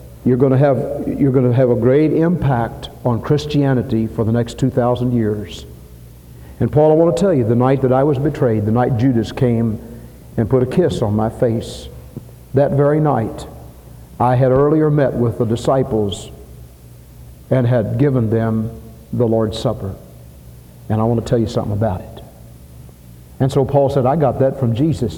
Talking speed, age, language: 185 wpm, 60-79, English